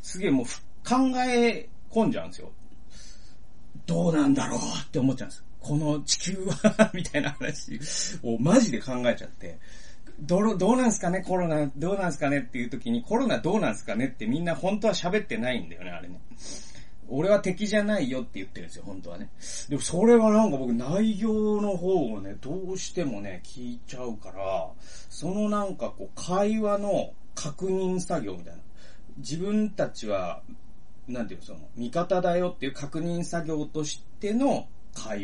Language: Japanese